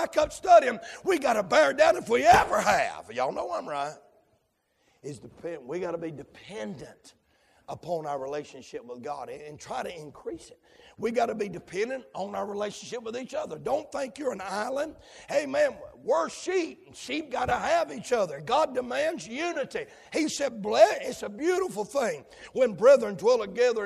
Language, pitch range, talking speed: English, 195-325 Hz, 180 wpm